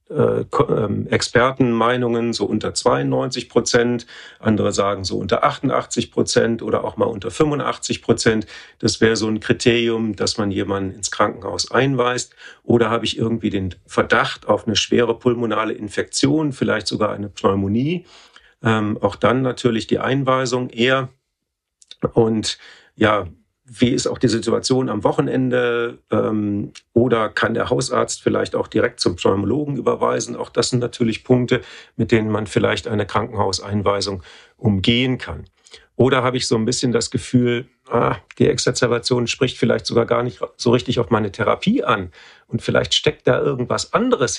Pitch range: 105-125 Hz